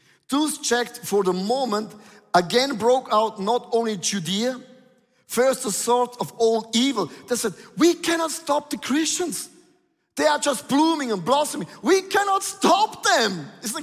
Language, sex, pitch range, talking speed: English, male, 210-275 Hz, 150 wpm